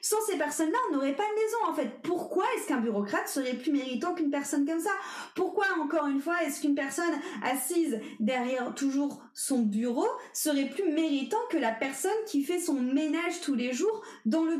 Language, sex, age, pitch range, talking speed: French, female, 30-49, 245-325 Hz, 195 wpm